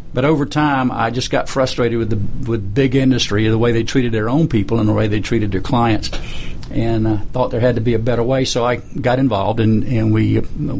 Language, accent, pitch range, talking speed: English, American, 110-130 Hz, 240 wpm